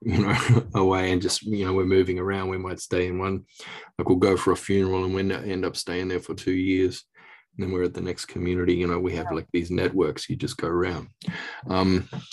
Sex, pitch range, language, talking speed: male, 85-95 Hz, English, 240 wpm